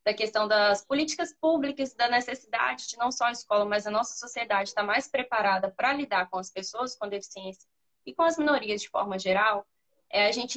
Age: 10-29